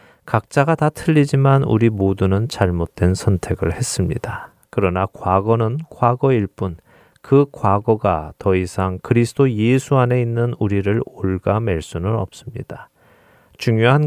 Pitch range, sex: 95-125 Hz, male